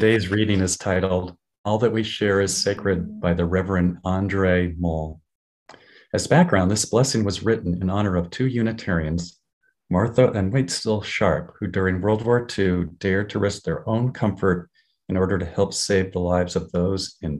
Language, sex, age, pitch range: English, male, 50-69, 90-110 Hz